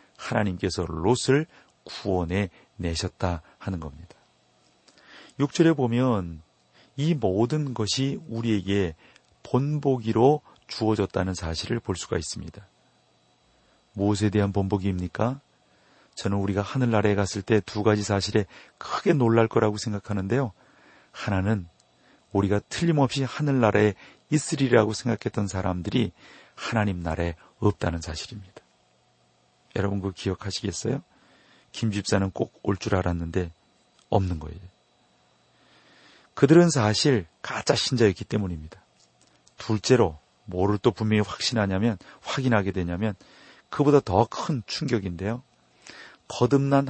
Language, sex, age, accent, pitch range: Korean, male, 40-59, native, 90-120 Hz